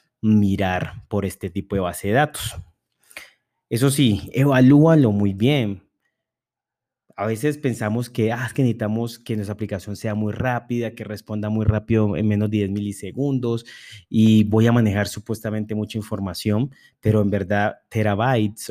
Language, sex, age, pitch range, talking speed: Spanish, male, 30-49, 100-120 Hz, 150 wpm